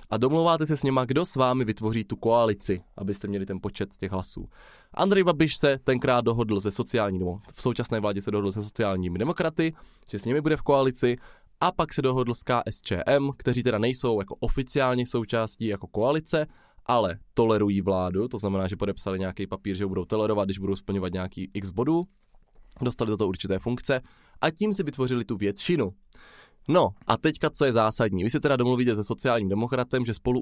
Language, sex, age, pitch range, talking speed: Czech, male, 20-39, 100-130 Hz, 190 wpm